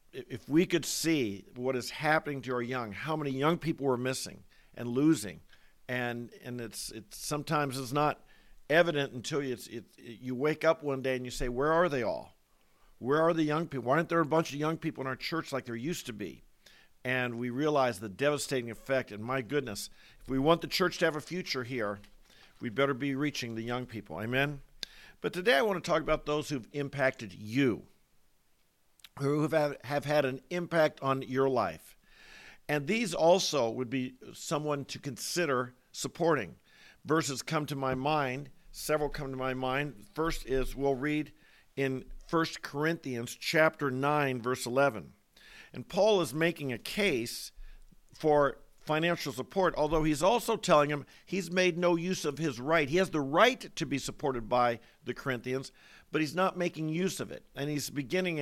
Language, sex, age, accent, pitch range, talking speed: English, male, 50-69, American, 130-160 Hz, 185 wpm